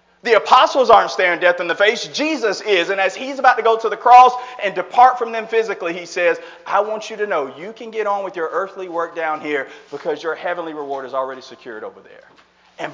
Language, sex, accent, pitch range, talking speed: English, male, American, 160-215 Hz, 235 wpm